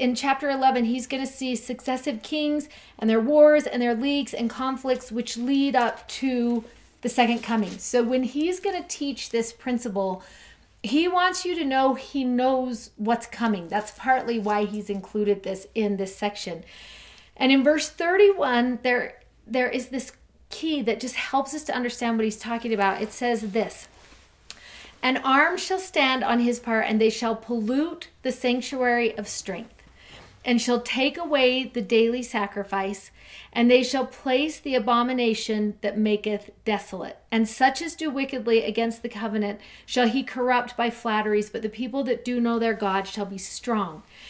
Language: English